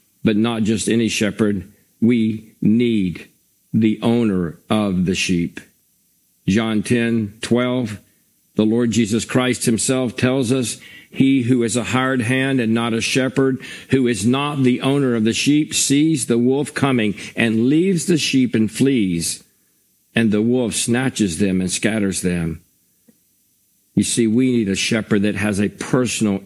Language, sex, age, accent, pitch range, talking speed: English, male, 50-69, American, 100-125 Hz, 155 wpm